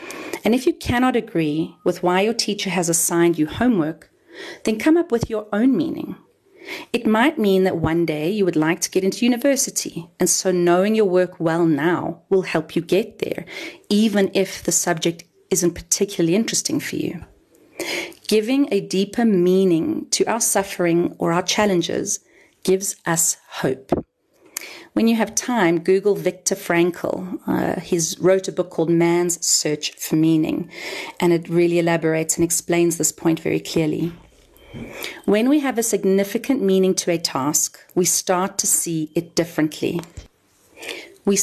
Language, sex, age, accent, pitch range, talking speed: English, female, 30-49, South African, 170-215 Hz, 160 wpm